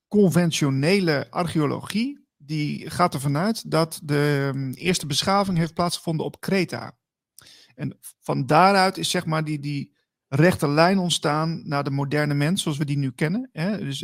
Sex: male